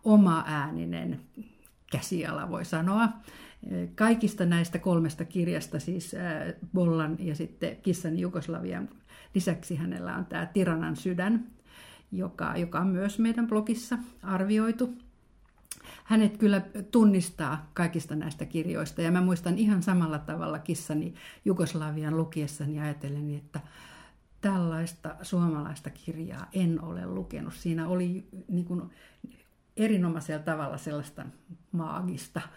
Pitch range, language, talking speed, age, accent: 160-195 Hz, Finnish, 105 wpm, 50-69, native